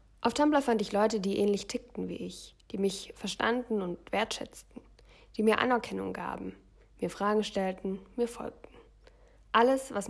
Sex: female